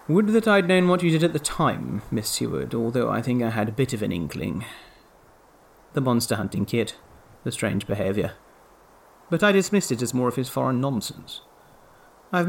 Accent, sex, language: British, male, English